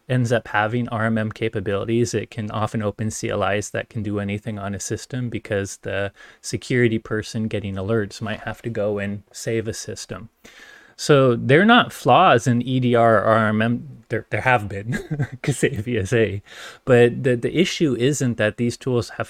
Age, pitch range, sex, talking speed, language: 30-49, 105-120 Hz, male, 170 wpm, English